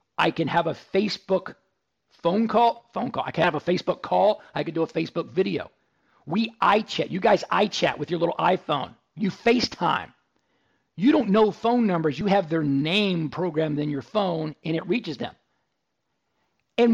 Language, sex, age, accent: English, male, 50-69, American